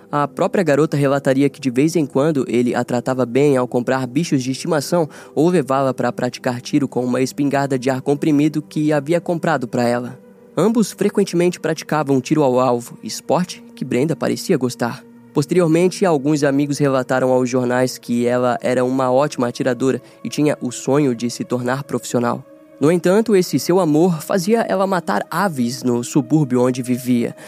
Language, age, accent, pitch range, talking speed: Portuguese, 10-29, Brazilian, 125-160 Hz, 170 wpm